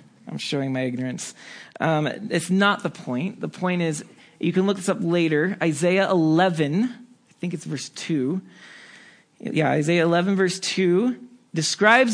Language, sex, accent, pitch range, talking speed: English, male, American, 130-175 Hz, 155 wpm